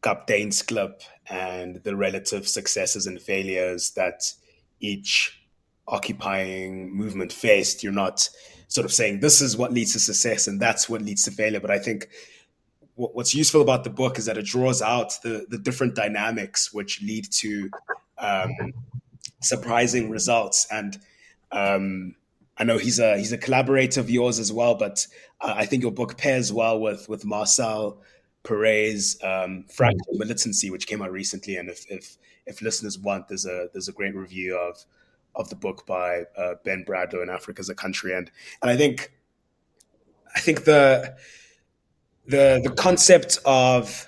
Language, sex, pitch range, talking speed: English, male, 100-125 Hz, 165 wpm